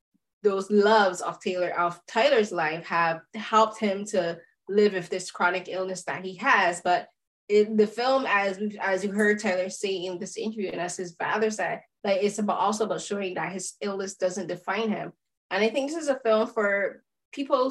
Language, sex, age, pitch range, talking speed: English, female, 20-39, 185-220 Hz, 200 wpm